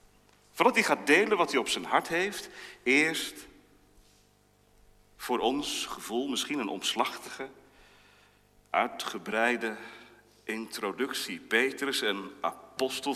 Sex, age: male, 40-59